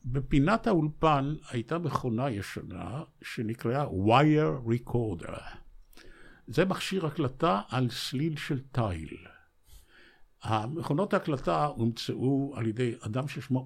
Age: 60-79